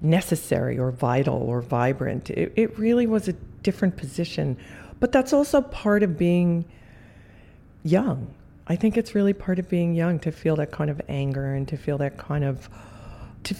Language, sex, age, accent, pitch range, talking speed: English, female, 40-59, American, 135-175 Hz, 175 wpm